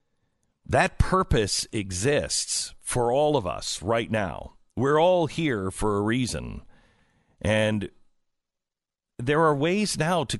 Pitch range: 95-145 Hz